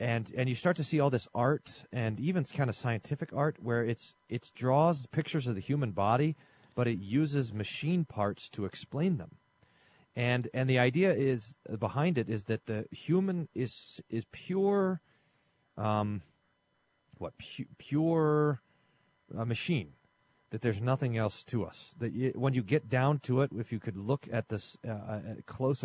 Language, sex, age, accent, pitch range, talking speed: English, male, 40-59, American, 105-145 Hz, 180 wpm